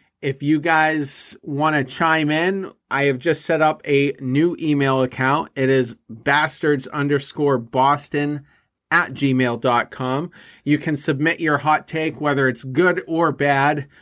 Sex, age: male, 30-49